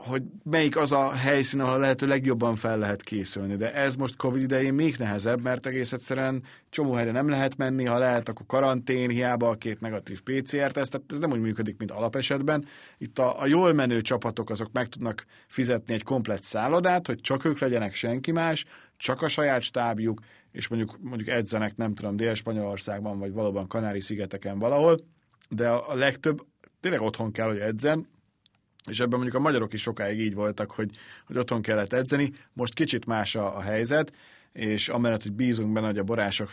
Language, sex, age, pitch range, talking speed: Hungarian, male, 30-49, 110-135 Hz, 185 wpm